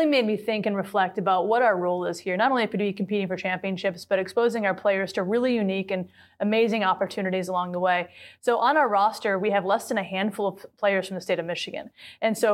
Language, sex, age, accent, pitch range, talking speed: English, female, 30-49, American, 195-225 Hz, 240 wpm